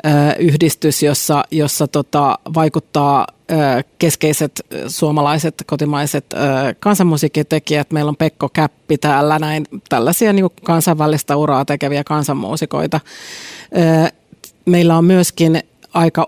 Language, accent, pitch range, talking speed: Finnish, native, 145-165 Hz, 90 wpm